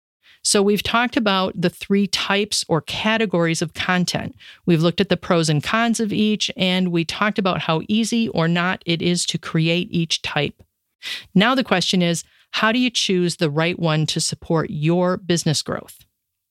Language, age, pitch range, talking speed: English, 40-59, 165-215 Hz, 180 wpm